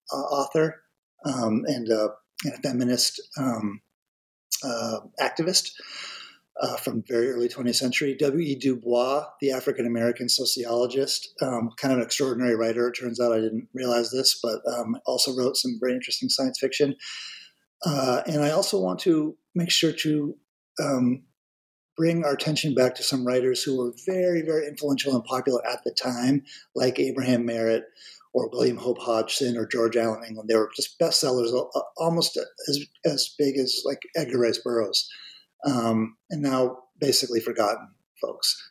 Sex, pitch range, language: male, 120-150 Hz, English